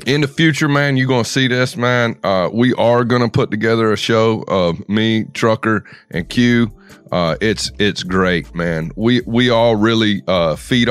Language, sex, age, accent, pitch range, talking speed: English, male, 30-49, American, 100-130 Hz, 180 wpm